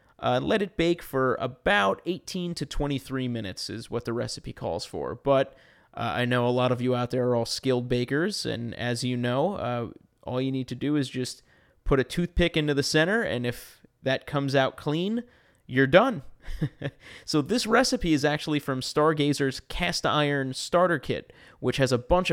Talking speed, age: 190 wpm, 30-49